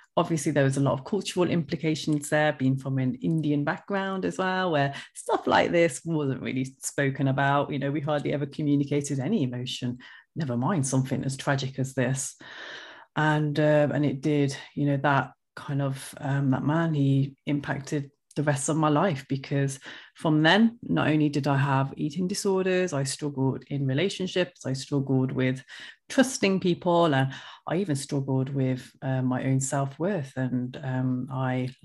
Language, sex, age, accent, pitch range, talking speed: English, female, 30-49, British, 135-165 Hz, 170 wpm